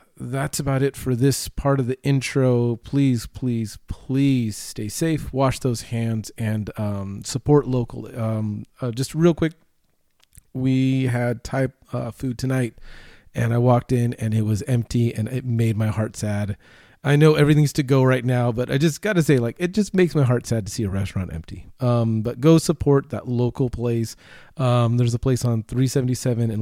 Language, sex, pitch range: English, male, 110-135 Hz